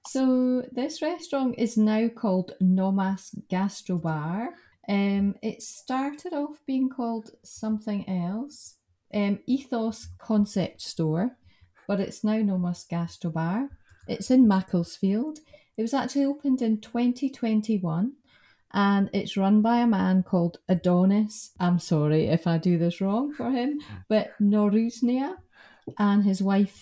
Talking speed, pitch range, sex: 130 wpm, 185-235 Hz, female